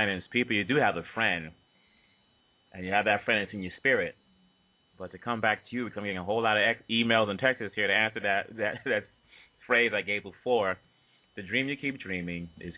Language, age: English, 30-49